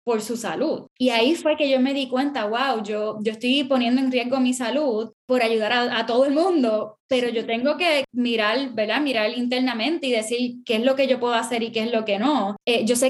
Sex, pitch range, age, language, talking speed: female, 225-275 Hz, 10-29, English, 245 wpm